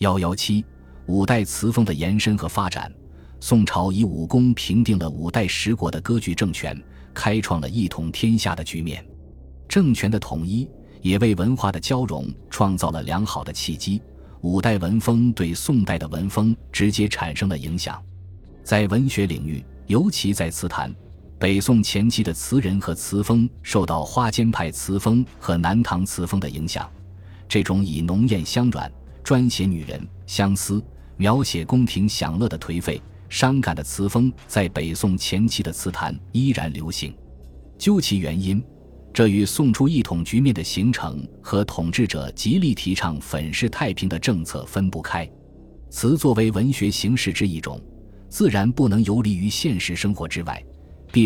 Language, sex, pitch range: Chinese, male, 80-110 Hz